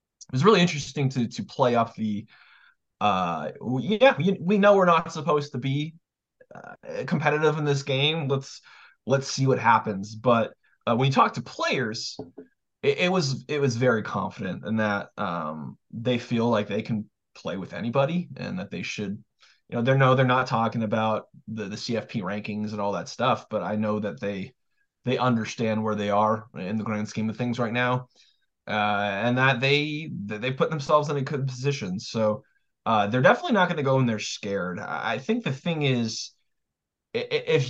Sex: male